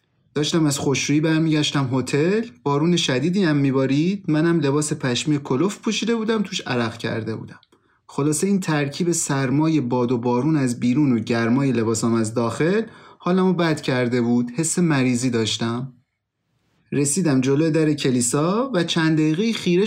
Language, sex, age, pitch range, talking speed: Persian, male, 30-49, 130-185 Hz, 145 wpm